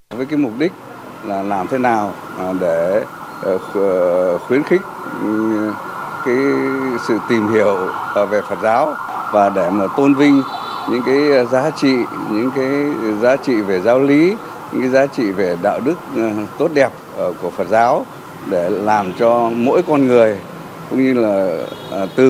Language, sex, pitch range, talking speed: Vietnamese, male, 120-180 Hz, 150 wpm